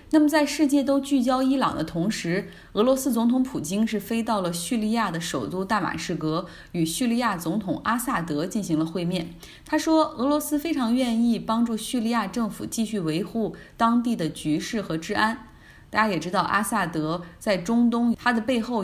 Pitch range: 170-235 Hz